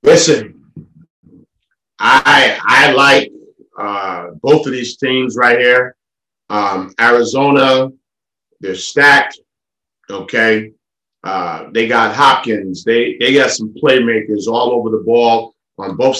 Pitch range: 115-145 Hz